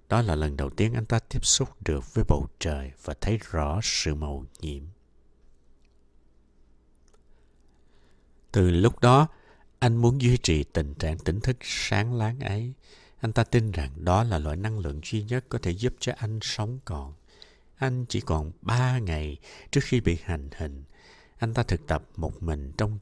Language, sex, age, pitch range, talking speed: Vietnamese, male, 60-79, 75-115 Hz, 175 wpm